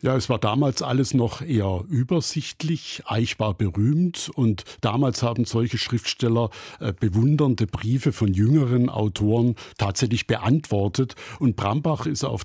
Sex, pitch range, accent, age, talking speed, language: male, 110-135 Hz, German, 50-69, 135 wpm, German